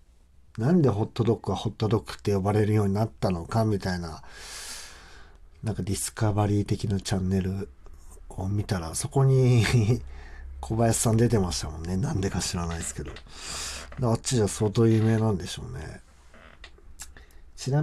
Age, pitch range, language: 50-69, 70-110 Hz, Japanese